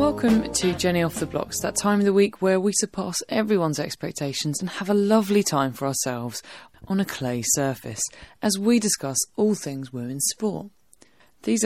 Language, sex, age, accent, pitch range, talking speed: English, female, 20-39, British, 145-200 Hz, 180 wpm